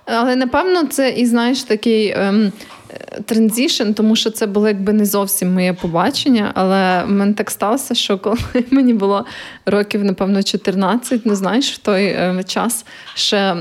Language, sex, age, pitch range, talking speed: Ukrainian, female, 20-39, 195-240 Hz, 160 wpm